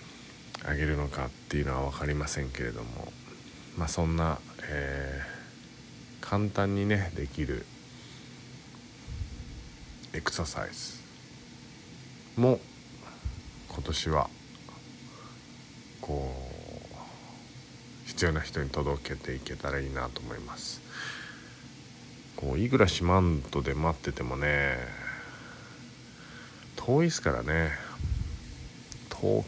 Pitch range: 70-90 Hz